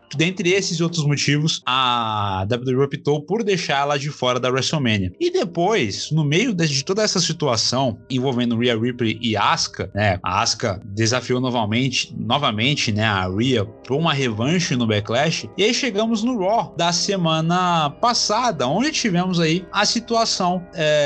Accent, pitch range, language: Brazilian, 120-190 Hz, Portuguese